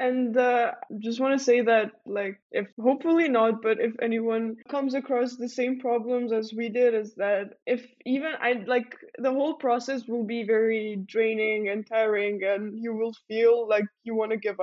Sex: female